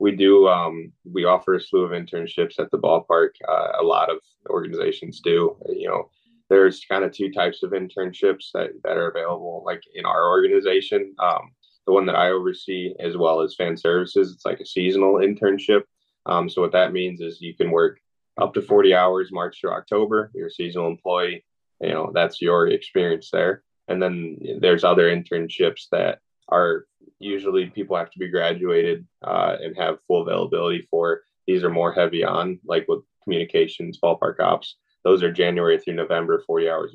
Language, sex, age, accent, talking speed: English, male, 20-39, American, 185 wpm